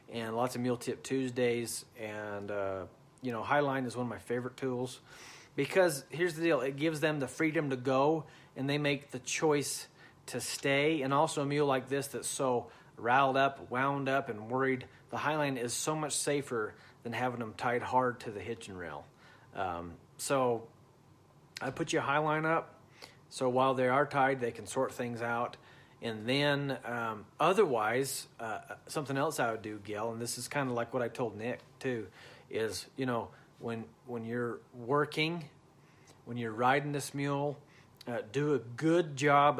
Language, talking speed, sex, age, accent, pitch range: English, 185 wpm, male, 40-59, American, 120-145 Hz